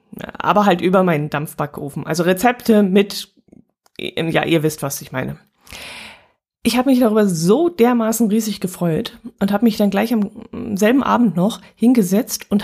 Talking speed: 155 wpm